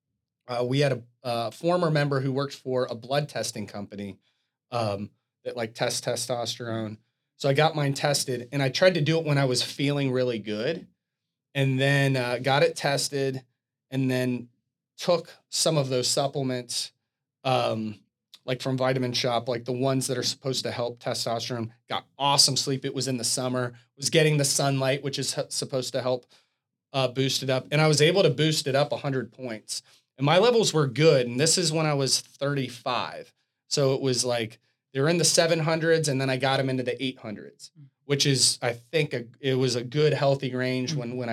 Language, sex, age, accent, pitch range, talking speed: English, male, 30-49, American, 125-145 Hz, 195 wpm